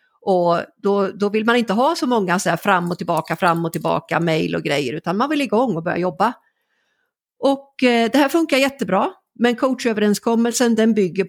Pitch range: 175-235 Hz